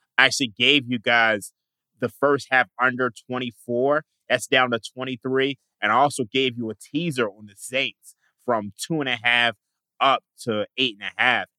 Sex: male